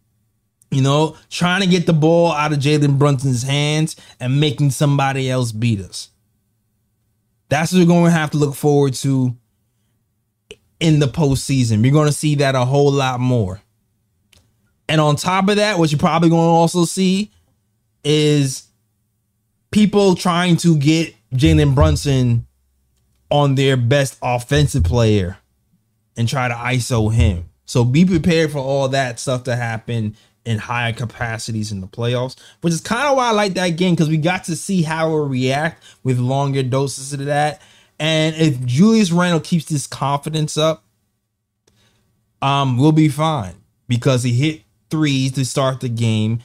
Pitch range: 110-150 Hz